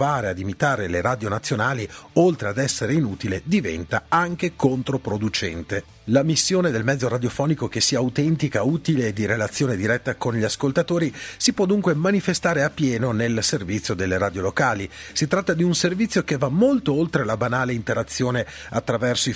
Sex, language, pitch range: male, Italian, 110-155 Hz